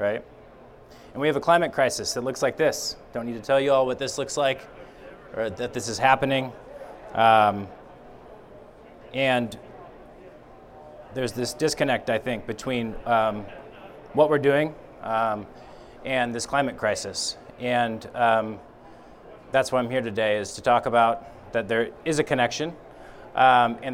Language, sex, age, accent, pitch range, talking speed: English, male, 20-39, American, 110-130 Hz, 155 wpm